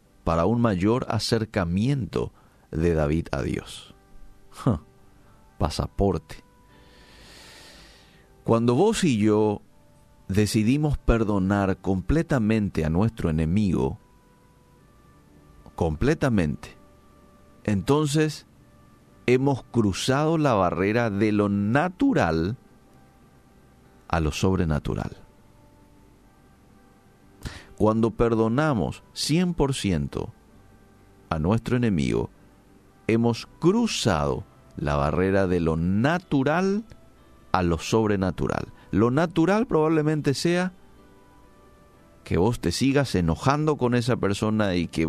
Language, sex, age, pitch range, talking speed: Spanish, male, 50-69, 90-125 Hz, 80 wpm